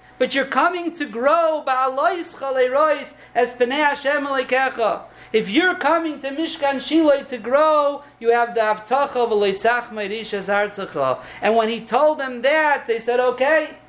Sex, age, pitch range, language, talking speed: male, 50-69, 210-275 Hz, English, 110 wpm